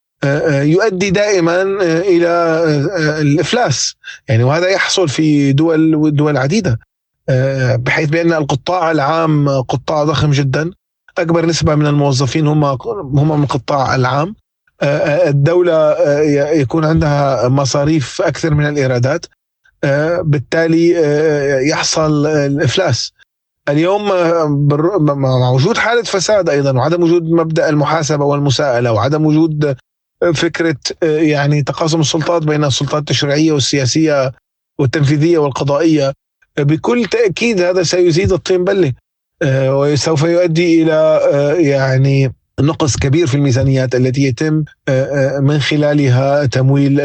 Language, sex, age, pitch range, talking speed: Arabic, male, 30-49, 135-165 Hz, 100 wpm